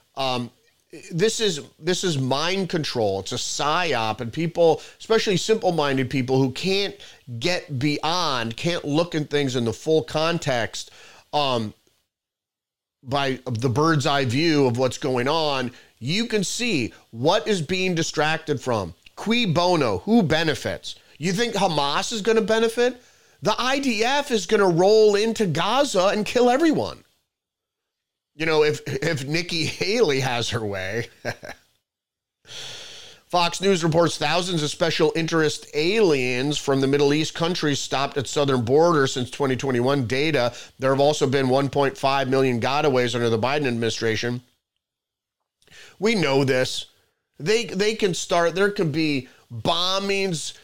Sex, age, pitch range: male, 30-49, 130-180 Hz